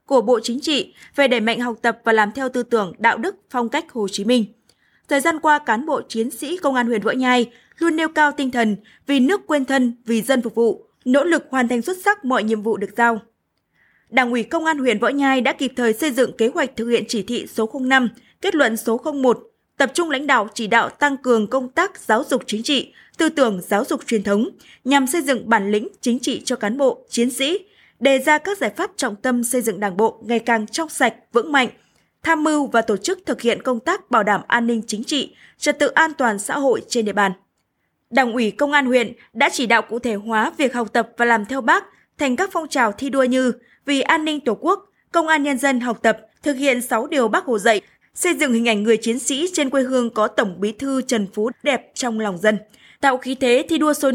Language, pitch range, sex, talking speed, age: Vietnamese, 230-285 Hz, female, 245 wpm, 20-39